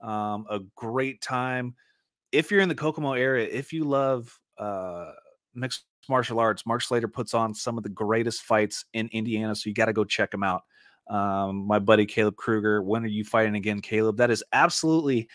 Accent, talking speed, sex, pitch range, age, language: American, 195 wpm, male, 110-150 Hz, 30-49, English